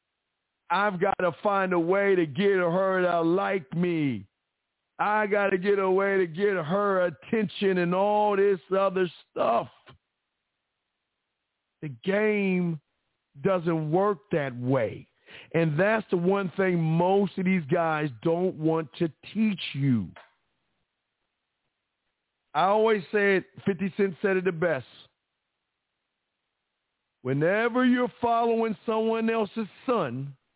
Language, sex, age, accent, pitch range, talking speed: English, male, 50-69, American, 145-195 Hz, 125 wpm